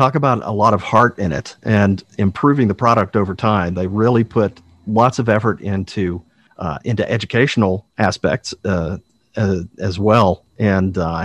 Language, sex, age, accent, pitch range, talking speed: English, male, 40-59, American, 95-115 Hz, 165 wpm